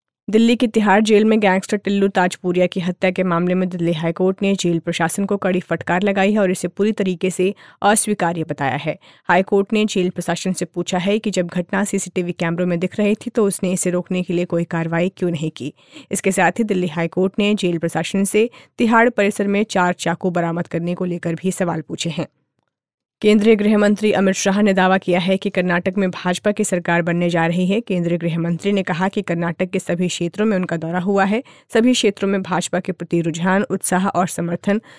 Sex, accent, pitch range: female, native, 175-205 Hz